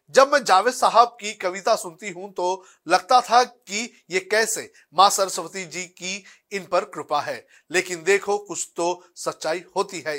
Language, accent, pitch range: Hindi, native, 150-190 Hz